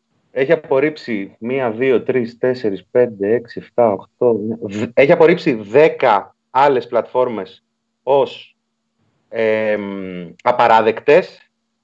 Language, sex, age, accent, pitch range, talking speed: Greek, male, 30-49, native, 125-170 Hz, 95 wpm